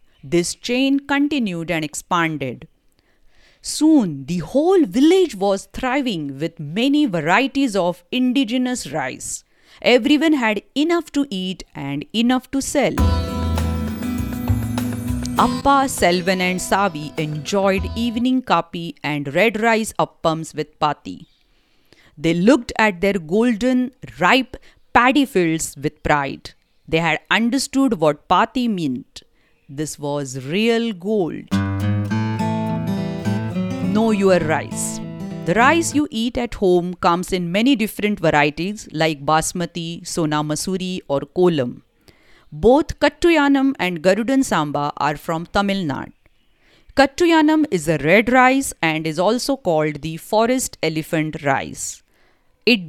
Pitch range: 155-250 Hz